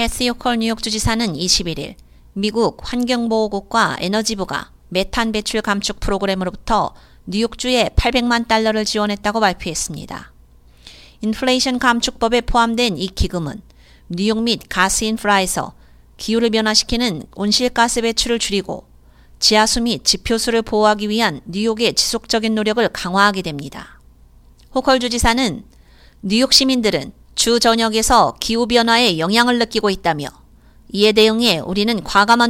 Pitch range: 190-235 Hz